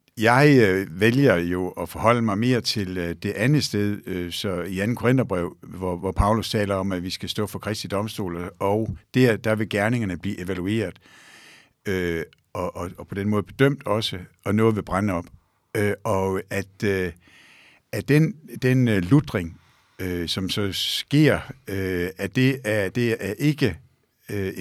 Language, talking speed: Danish, 145 wpm